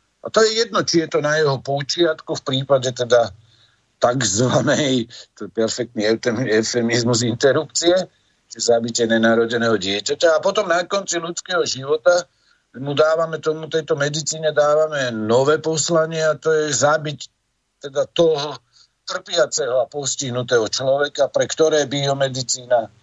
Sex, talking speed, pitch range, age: male, 130 wpm, 115-165 Hz, 50-69